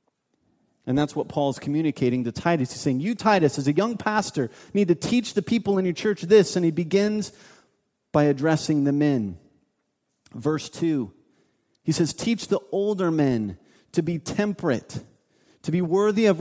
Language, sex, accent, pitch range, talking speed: English, male, American, 165-215 Hz, 170 wpm